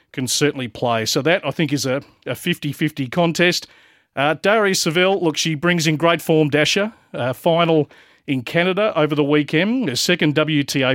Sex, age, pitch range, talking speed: male, 40-59, 125-155 Hz, 175 wpm